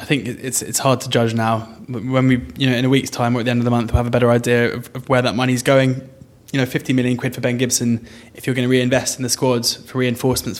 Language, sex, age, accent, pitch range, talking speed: English, male, 20-39, British, 120-130 Hz, 295 wpm